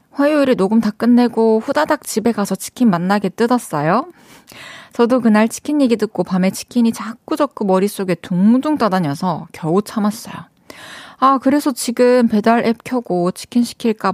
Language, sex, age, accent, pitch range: Korean, female, 20-39, native, 180-250 Hz